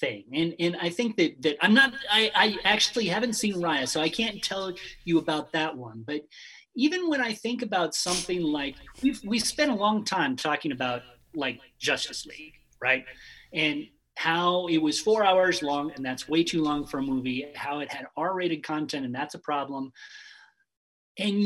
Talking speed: 195 wpm